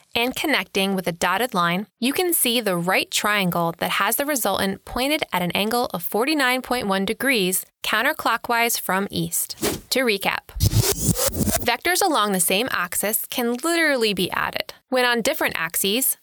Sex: female